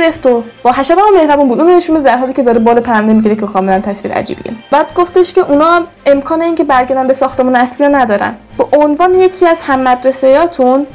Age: 10-29